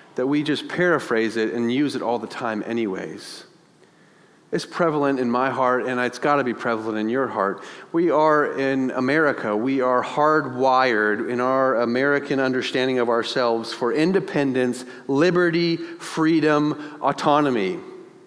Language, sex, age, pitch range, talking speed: English, male, 40-59, 140-195 Hz, 140 wpm